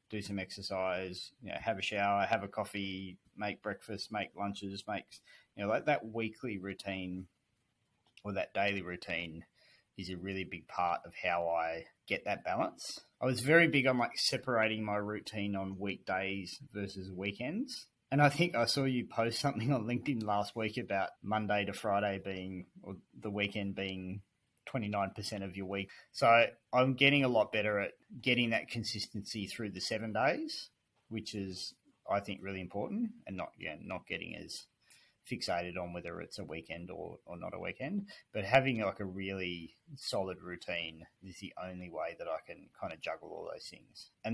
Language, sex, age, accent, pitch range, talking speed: English, male, 20-39, Australian, 95-115 Hz, 180 wpm